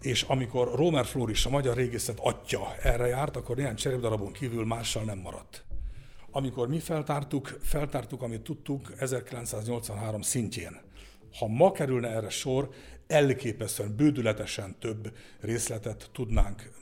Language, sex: Hungarian, male